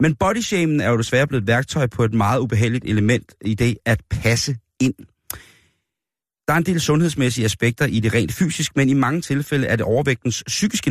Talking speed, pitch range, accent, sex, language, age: 200 wpm, 110-135 Hz, native, male, Danish, 30-49